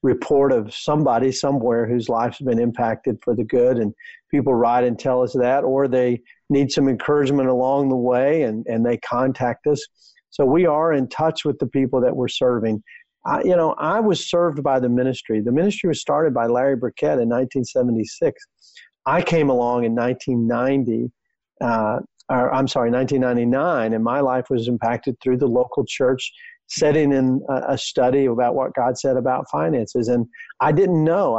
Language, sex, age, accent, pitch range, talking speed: English, male, 50-69, American, 120-150 Hz, 180 wpm